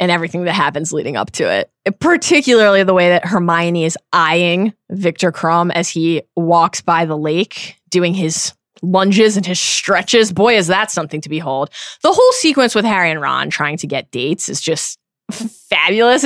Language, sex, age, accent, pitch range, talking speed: English, female, 20-39, American, 170-225 Hz, 180 wpm